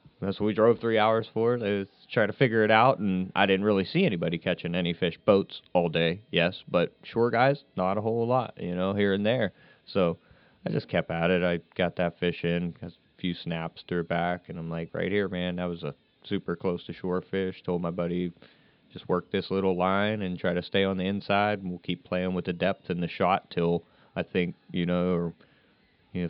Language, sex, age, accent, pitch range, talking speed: English, male, 30-49, American, 90-110 Hz, 225 wpm